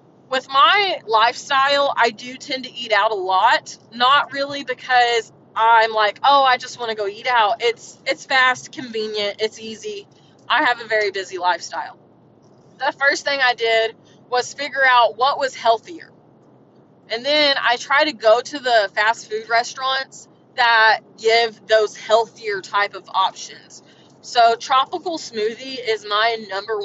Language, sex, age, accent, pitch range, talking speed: English, female, 20-39, American, 220-280 Hz, 160 wpm